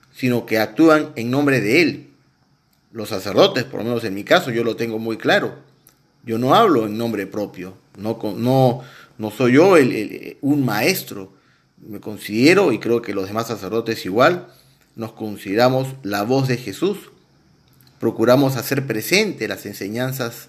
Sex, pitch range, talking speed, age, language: male, 110-145 Hz, 150 wpm, 40-59, Spanish